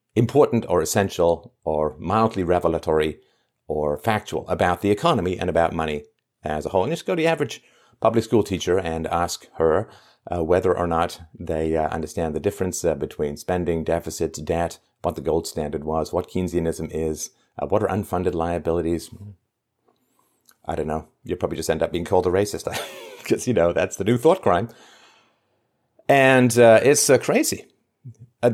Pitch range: 85-120 Hz